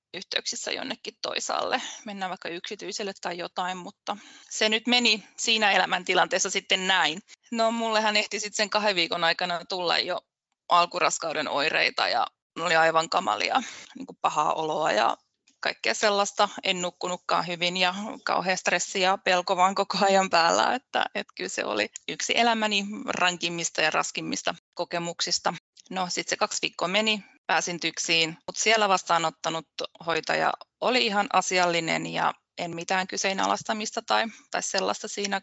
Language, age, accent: Finnish, 20-39, native